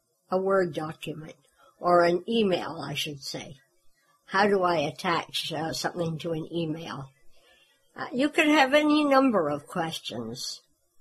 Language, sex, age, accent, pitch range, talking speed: English, male, 60-79, American, 165-210 Hz, 140 wpm